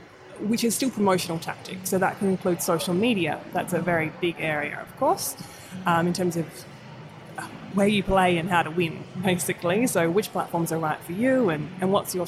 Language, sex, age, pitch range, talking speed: English, female, 20-39, 170-200 Hz, 200 wpm